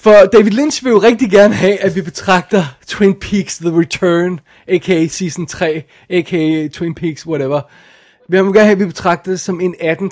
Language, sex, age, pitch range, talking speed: Danish, male, 20-39, 150-200 Hz, 195 wpm